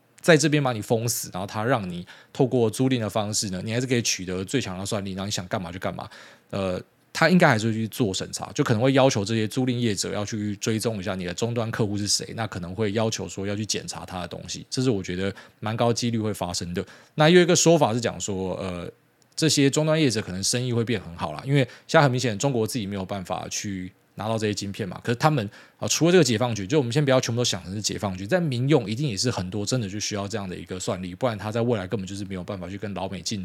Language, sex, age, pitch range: Chinese, male, 20-39, 100-125 Hz